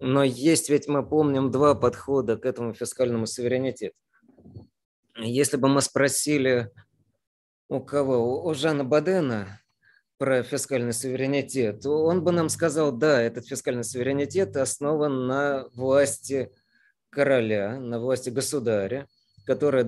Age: 20-39